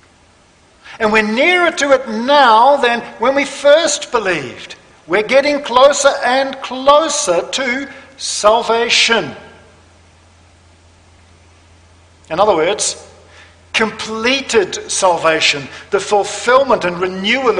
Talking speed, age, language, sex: 90 wpm, 50-69, English, male